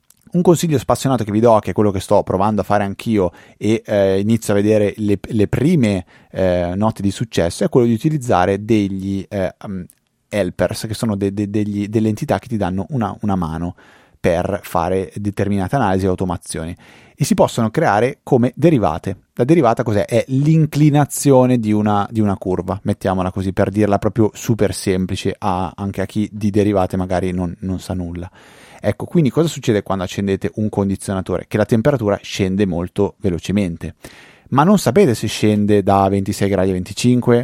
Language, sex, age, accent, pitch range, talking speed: Italian, male, 30-49, native, 95-120 Hz, 170 wpm